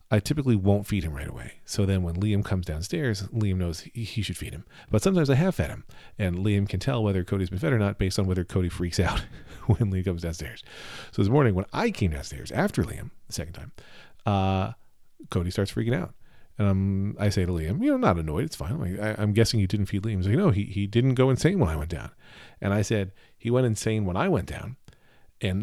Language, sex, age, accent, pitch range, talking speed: English, male, 40-59, American, 95-120 Hz, 250 wpm